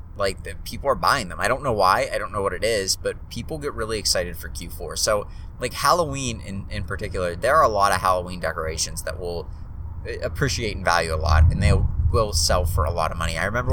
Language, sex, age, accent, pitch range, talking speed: English, male, 20-39, American, 85-105 Hz, 230 wpm